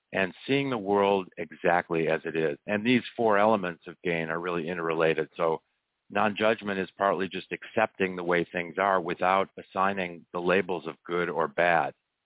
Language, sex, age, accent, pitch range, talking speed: English, male, 50-69, American, 85-100 Hz, 170 wpm